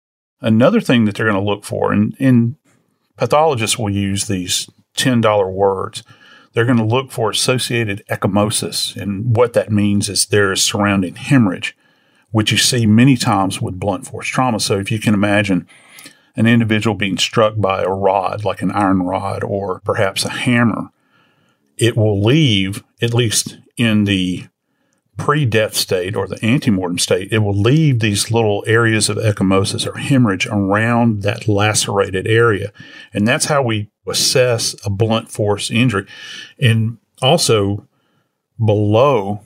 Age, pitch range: 40-59, 100-120 Hz